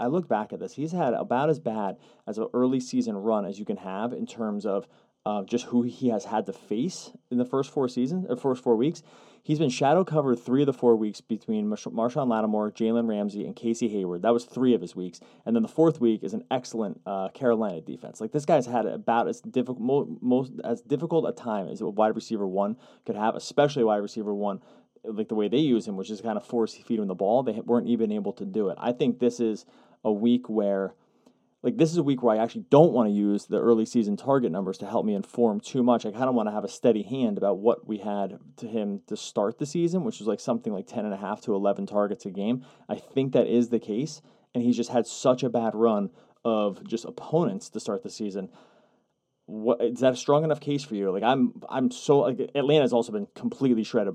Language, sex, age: English, male, 30-49